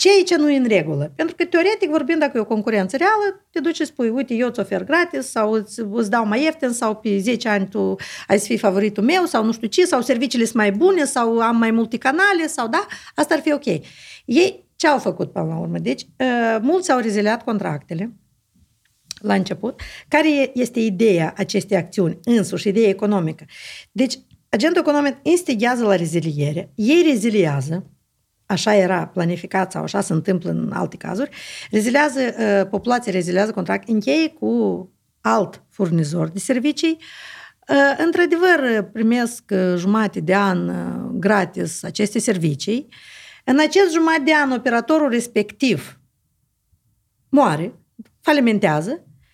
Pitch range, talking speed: 195-295 Hz, 155 wpm